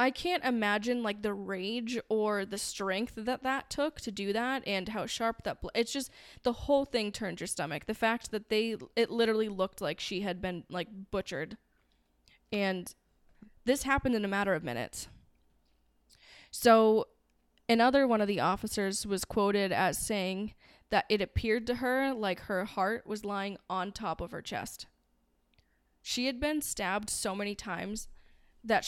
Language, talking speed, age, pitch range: English, 170 wpm, 10-29, 190-230 Hz